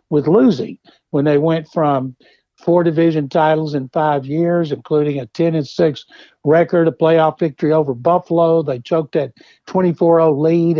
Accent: American